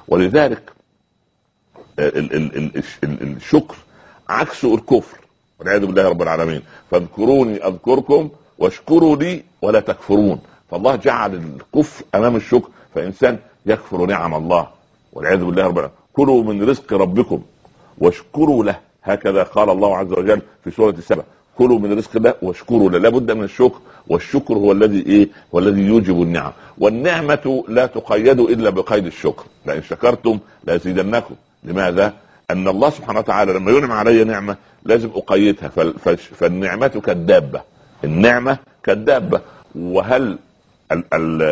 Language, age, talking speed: Arabic, 60-79, 115 wpm